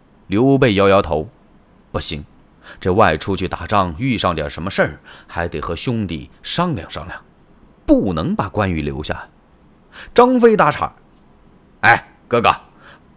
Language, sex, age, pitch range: Chinese, male, 30-49, 90-135 Hz